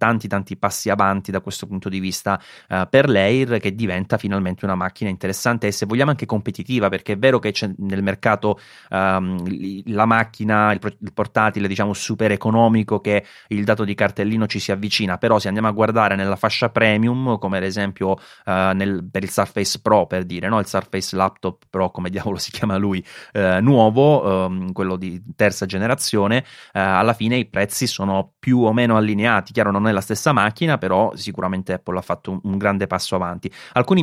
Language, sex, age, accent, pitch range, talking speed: Italian, male, 30-49, native, 95-110 Hz, 190 wpm